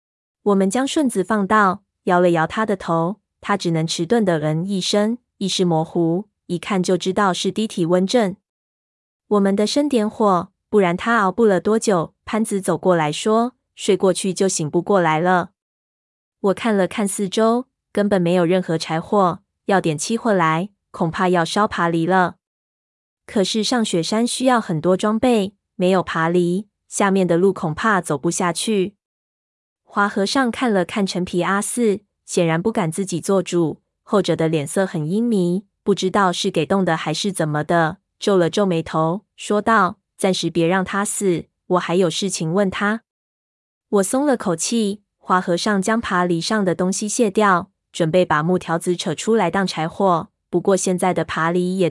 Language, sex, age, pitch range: Chinese, female, 20-39, 170-210 Hz